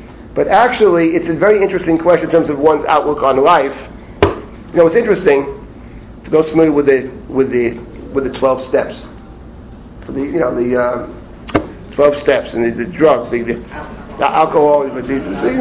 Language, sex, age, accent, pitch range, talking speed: English, male, 40-59, American, 120-150 Hz, 170 wpm